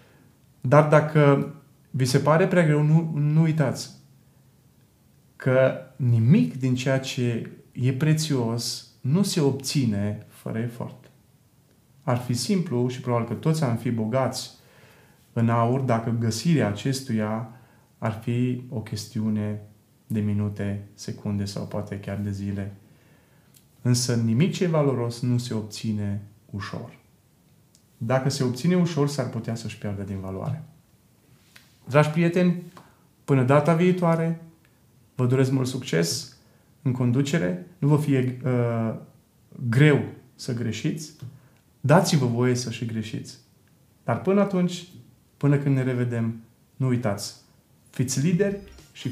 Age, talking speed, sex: 30-49, 125 wpm, male